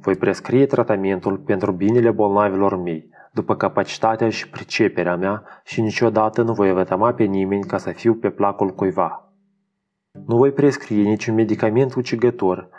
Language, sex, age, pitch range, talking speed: Romanian, male, 20-39, 95-120 Hz, 145 wpm